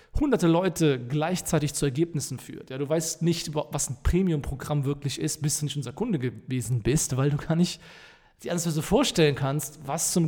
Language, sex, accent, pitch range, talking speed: German, male, German, 140-165 Hz, 185 wpm